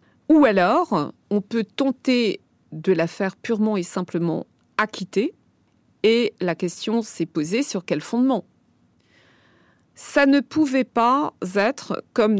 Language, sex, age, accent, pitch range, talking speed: French, female, 40-59, French, 185-240 Hz, 125 wpm